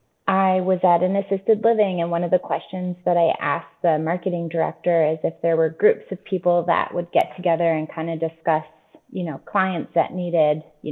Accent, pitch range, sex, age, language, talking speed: American, 160-180 Hz, female, 20-39, English, 210 wpm